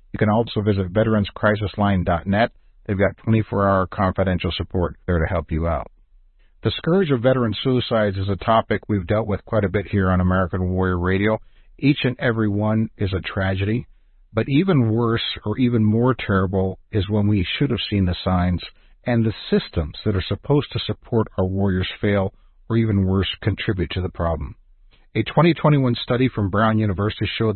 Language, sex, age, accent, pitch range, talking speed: English, male, 50-69, American, 90-110 Hz, 175 wpm